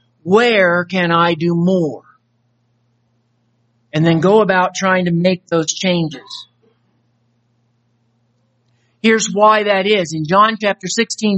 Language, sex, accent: English, male, American